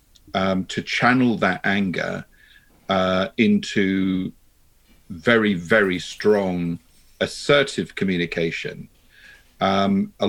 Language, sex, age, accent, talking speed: English, male, 40-59, British, 80 wpm